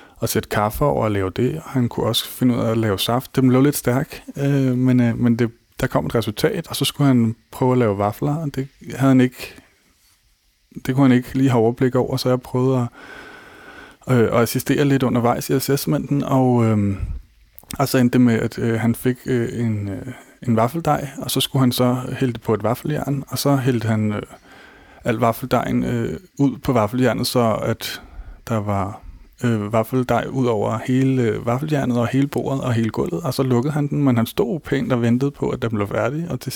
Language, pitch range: Danish, 115-130 Hz